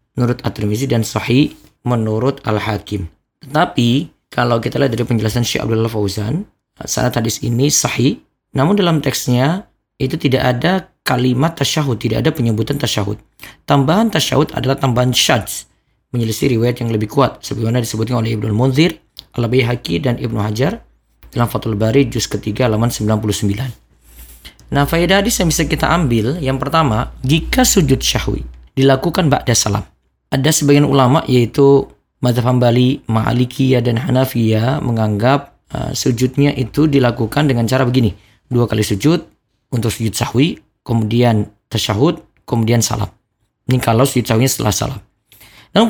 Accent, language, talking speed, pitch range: native, Indonesian, 135 wpm, 110-145 Hz